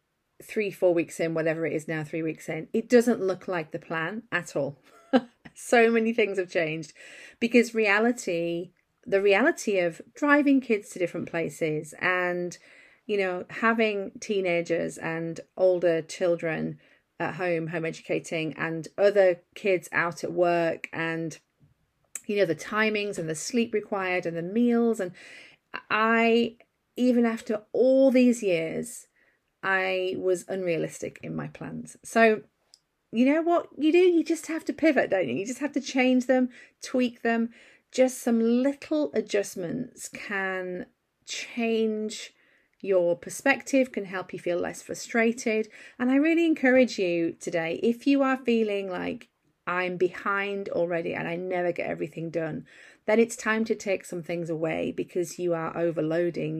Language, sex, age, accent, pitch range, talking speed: English, female, 40-59, British, 170-235 Hz, 155 wpm